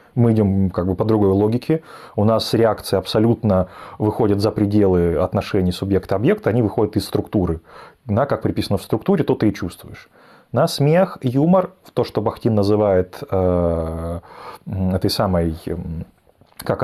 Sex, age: male, 20-39